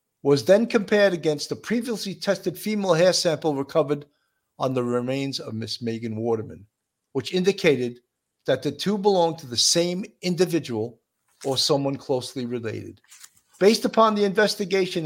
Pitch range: 135-180 Hz